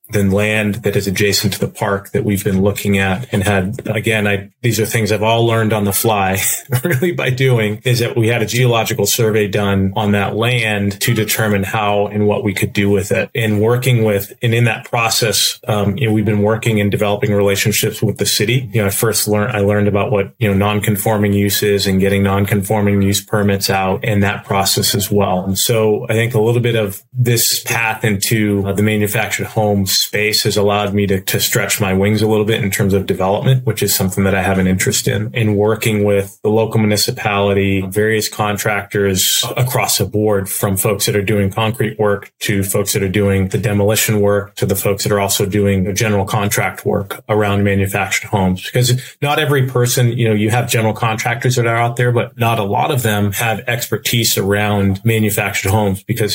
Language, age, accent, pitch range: English, 30-49, American, 100-115 Hz